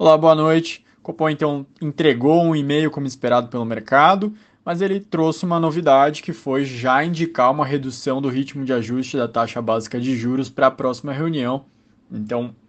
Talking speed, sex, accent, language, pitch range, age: 180 wpm, male, Brazilian, Portuguese, 125-155 Hz, 20-39